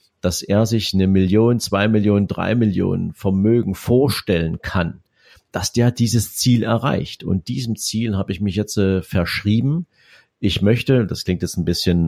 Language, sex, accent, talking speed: German, male, German, 165 wpm